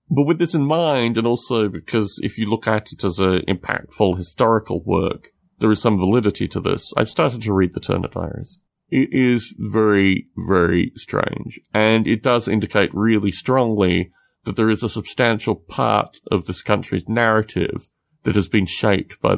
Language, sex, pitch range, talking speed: English, male, 95-120 Hz, 175 wpm